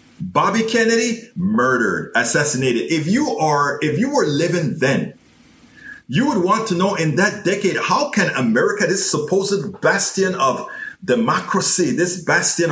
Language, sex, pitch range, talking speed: English, male, 170-220 Hz, 140 wpm